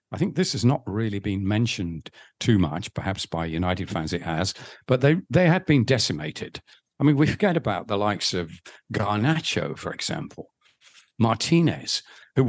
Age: 50-69